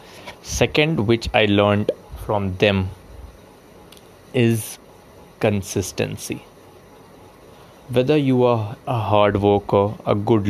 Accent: native